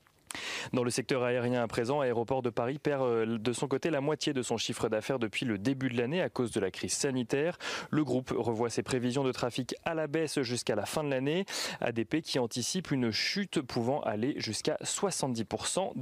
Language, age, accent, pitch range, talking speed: French, 30-49, French, 115-145 Hz, 200 wpm